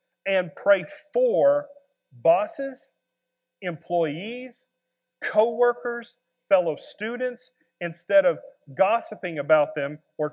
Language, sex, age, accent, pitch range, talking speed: English, male, 40-59, American, 170-225 Hz, 80 wpm